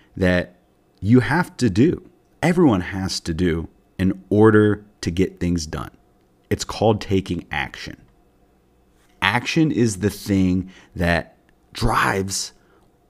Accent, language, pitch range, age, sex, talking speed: American, English, 85-110 Hz, 30-49, male, 115 wpm